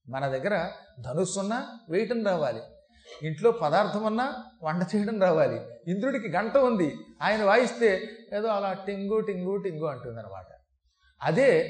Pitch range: 155-215 Hz